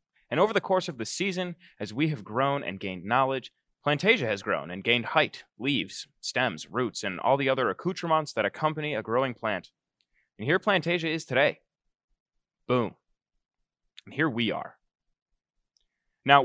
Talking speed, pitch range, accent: 160 wpm, 115-155 Hz, American